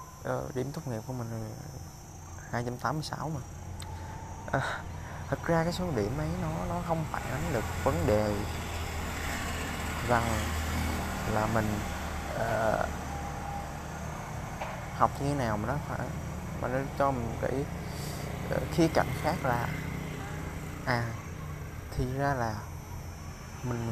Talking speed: 125 wpm